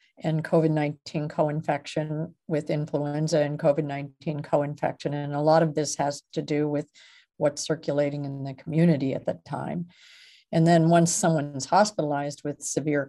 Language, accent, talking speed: English, American, 145 wpm